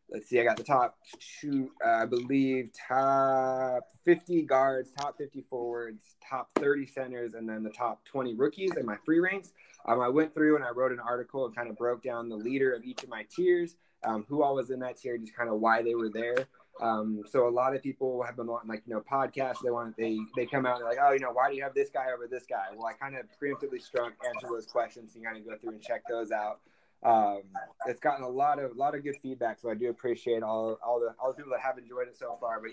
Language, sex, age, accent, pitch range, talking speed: English, male, 20-39, American, 115-135 Hz, 265 wpm